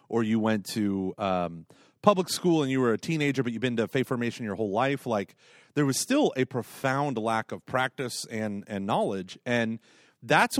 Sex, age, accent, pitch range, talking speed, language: male, 30-49, American, 105-135 Hz, 200 wpm, English